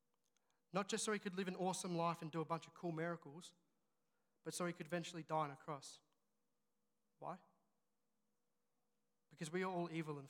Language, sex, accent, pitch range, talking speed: English, male, Australian, 150-185 Hz, 185 wpm